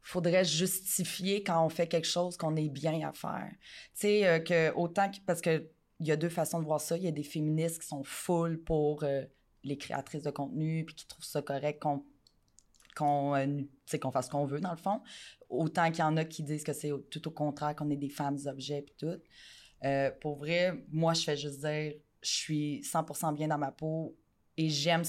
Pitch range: 145-170 Hz